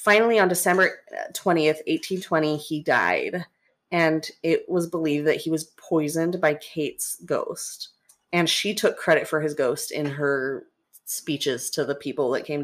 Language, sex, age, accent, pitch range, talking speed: English, female, 20-39, American, 155-190 Hz, 155 wpm